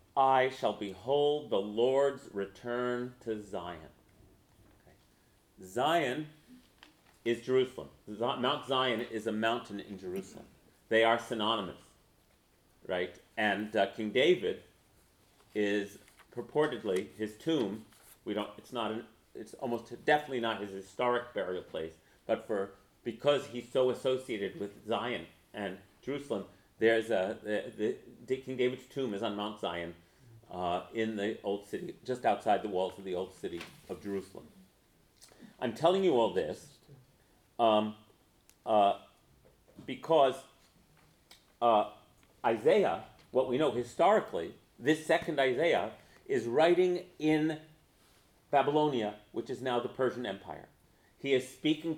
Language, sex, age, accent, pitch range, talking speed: English, male, 40-59, American, 100-130 Hz, 130 wpm